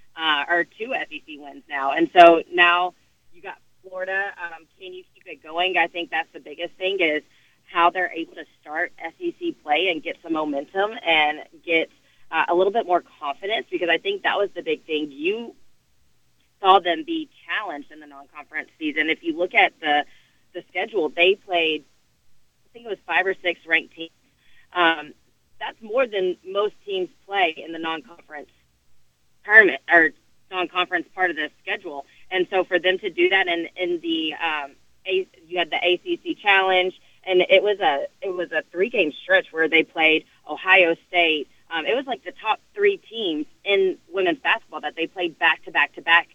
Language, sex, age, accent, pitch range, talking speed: English, female, 30-49, American, 155-195 Hz, 190 wpm